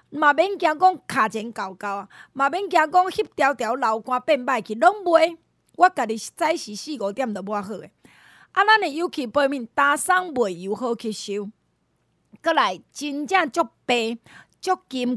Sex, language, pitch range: female, Chinese, 230-330 Hz